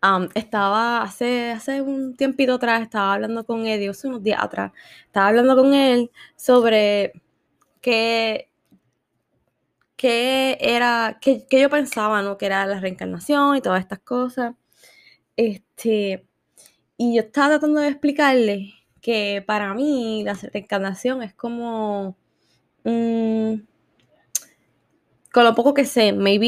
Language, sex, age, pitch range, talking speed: Spanish, female, 10-29, 200-245 Hz, 130 wpm